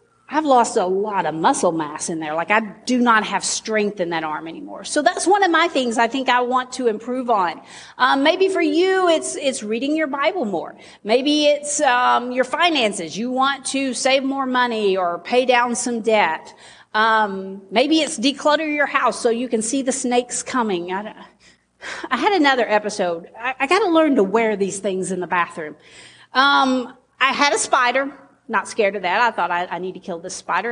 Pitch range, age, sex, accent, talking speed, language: 215-290 Hz, 40-59, female, American, 205 wpm, English